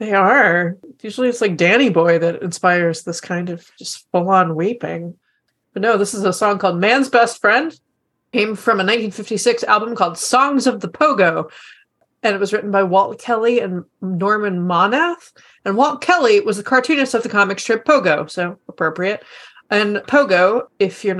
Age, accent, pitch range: 30-49, American, 180-230 Hz